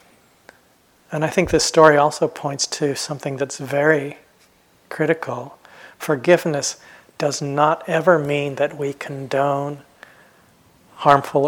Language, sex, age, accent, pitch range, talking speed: English, male, 40-59, American, 135-155 Hz, 110 wpm